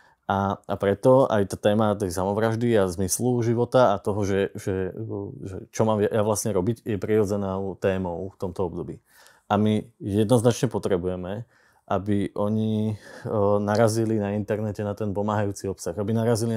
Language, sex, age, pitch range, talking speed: Slovak, male, 20-39, 95-110 Hz, 150 wpm